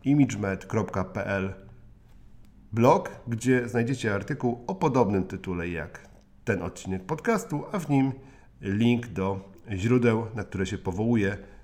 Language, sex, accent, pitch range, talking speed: Polish, male, native, 95-120 Hz, 115 wpm